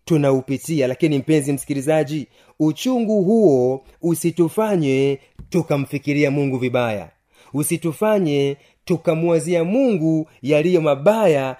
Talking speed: 80 wpm